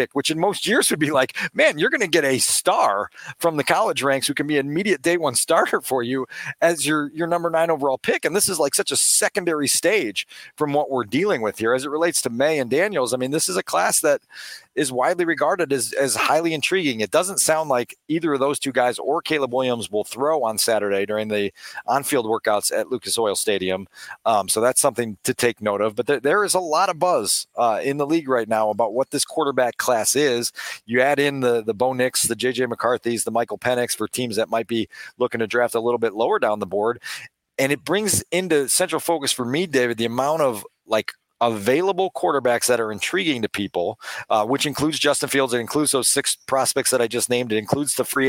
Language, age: English, 40-59